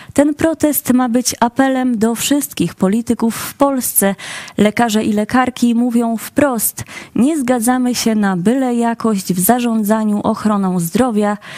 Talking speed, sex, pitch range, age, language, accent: 130 wpm, female, 210-255 Hz, 20-39, Polish, native